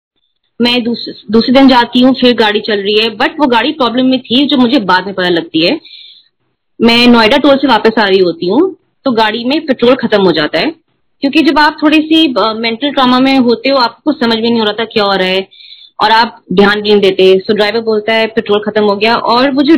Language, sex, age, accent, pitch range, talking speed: Hindi, female, 20-39, native, 210-265 Hz, 235 wpm